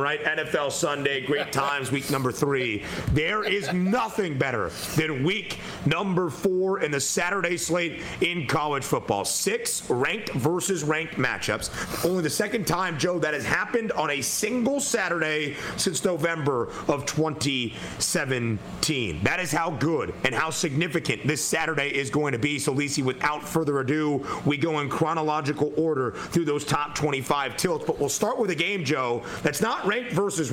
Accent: American